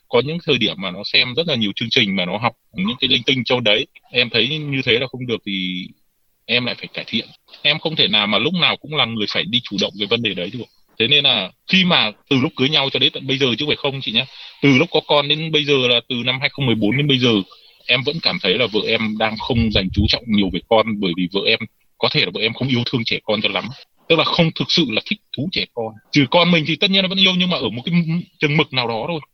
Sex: male